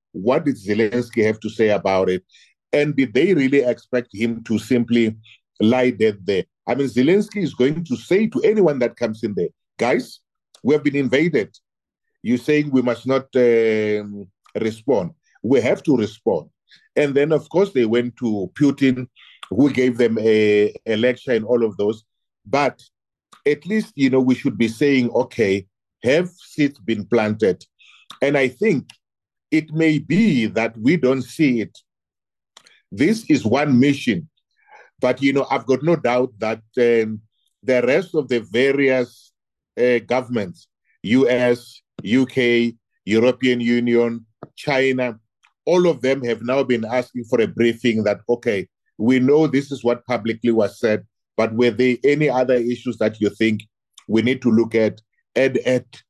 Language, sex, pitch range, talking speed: English, male, 110-135 Hz, 160 wpm